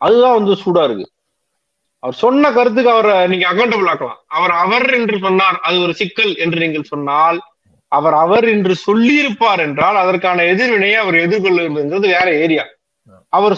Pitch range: 150-210 Hz